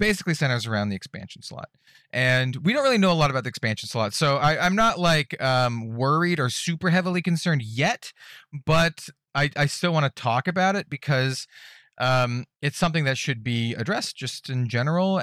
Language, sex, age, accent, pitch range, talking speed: English, male, 30-49, American, 115-155 Hz, 195 wpm